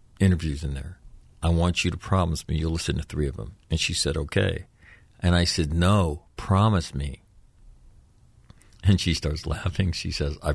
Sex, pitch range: male, 80-95 Hz